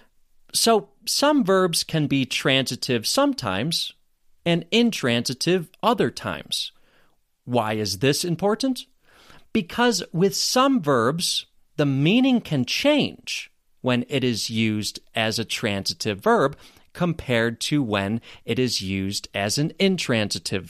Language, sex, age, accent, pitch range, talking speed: English, male, 30-49, American, 120-190 Hz, 115 wpm